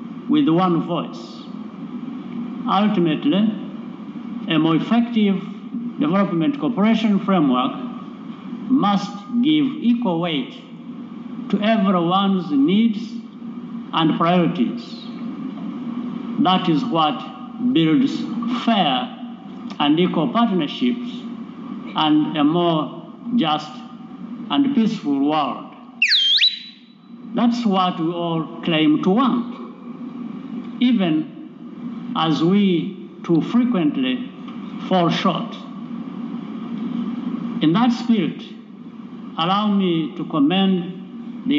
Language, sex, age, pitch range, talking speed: English, male, 60-79, 195-245 Hz, 80 wpm